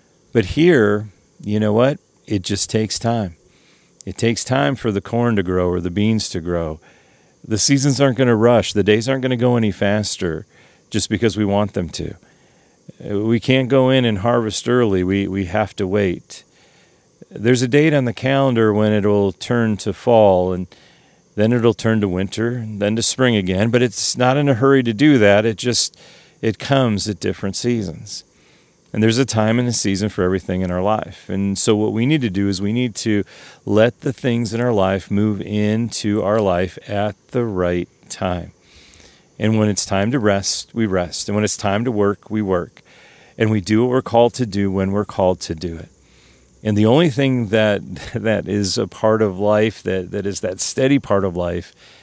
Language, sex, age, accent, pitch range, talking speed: English, male, 40-59, American, 95-115 Hz, 205 wpm